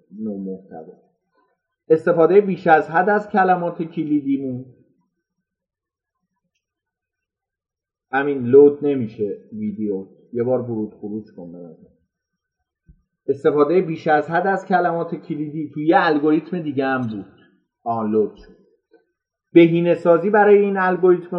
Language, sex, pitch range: Persian, male, 130-175 Hz